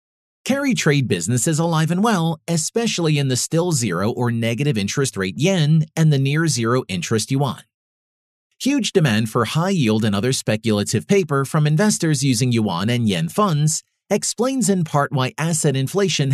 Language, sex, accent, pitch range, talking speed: English, male, American, 120-170 Hz, 165 wpm